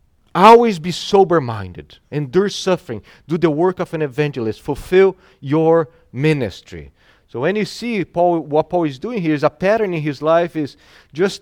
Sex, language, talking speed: male, English, 170 wpm